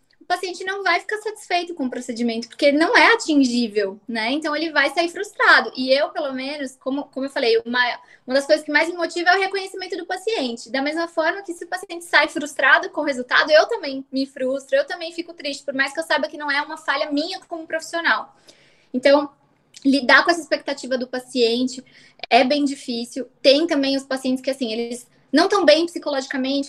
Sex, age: female, 20-39